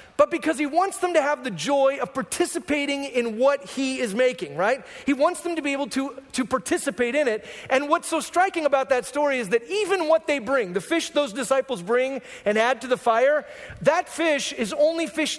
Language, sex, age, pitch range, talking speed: English, male, 40-59, 225-285 Hz, 220 wpm